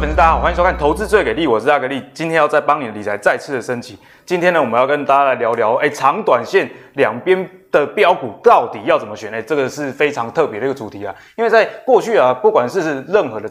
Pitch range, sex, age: 125-180 Hz, male, 20-39